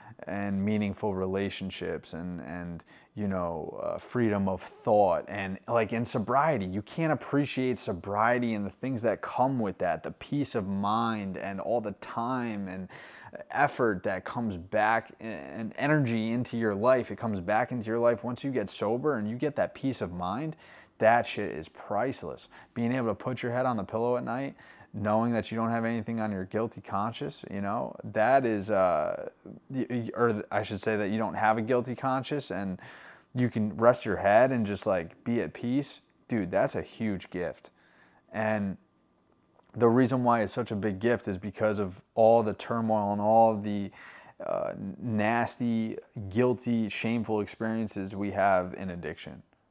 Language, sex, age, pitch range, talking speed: English, male, 20-39, 100-120 Hz, 175 wpm